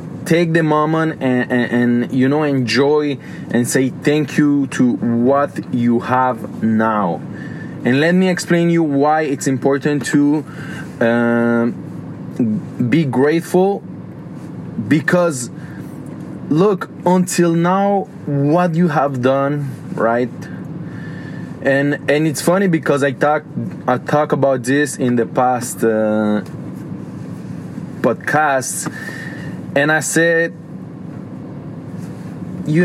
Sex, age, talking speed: male, 20-39, 110 wpm